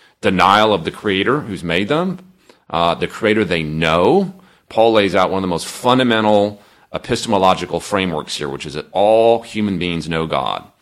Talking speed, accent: 170 wpm, American